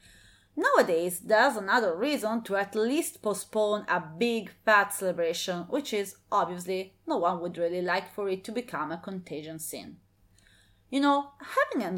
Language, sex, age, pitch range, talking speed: English, female, 30-49, 175-255 Hz, 155 wpm